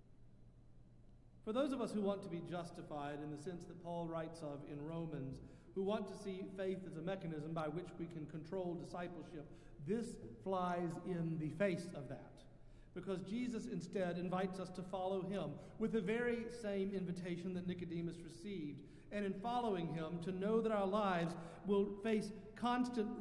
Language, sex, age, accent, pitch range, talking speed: English, male, 50-69, American, 150-200 Hz, 175 wpm